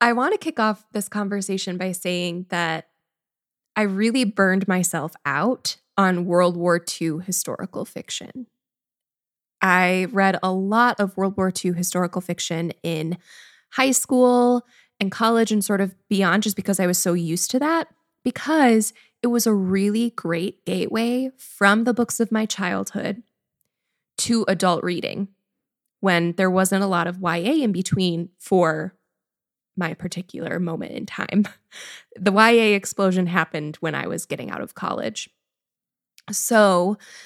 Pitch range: 180-235 Hz